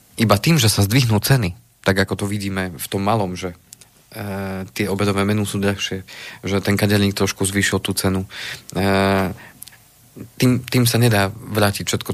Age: 40-59